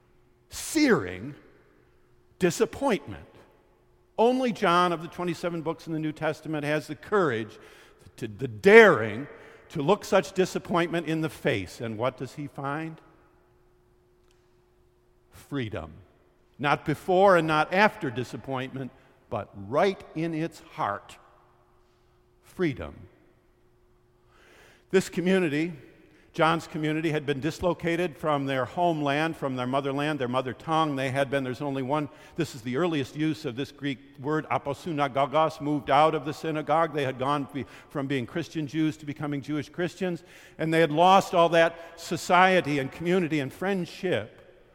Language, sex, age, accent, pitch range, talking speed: English, male, 50-69, American, 130-175 Hz, 135 wpm